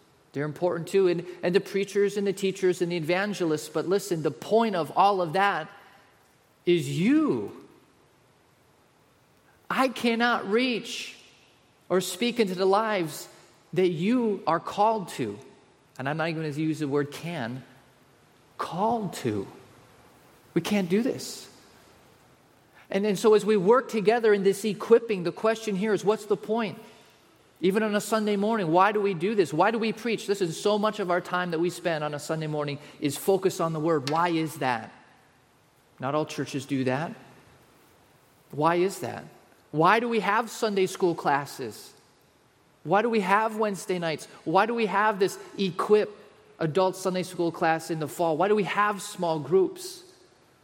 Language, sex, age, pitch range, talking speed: English, male, 30-49, 160-210 Hz, 170 wpm